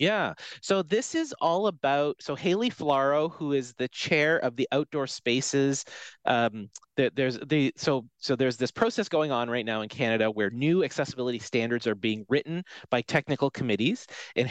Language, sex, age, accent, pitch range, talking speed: English, male, 30-49, American, 120-155 Hz, 180 wpm